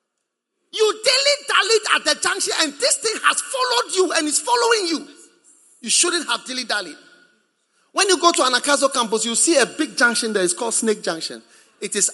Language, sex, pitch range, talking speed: English, male, 245-375 Hz, 185 wpm